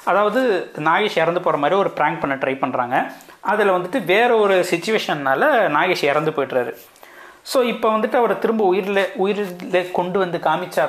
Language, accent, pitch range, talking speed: Tamil, native, 170-225 Hz, 155 wpm